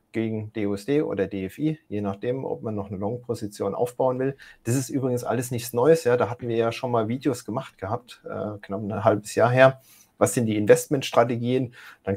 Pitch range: 105-145 Hz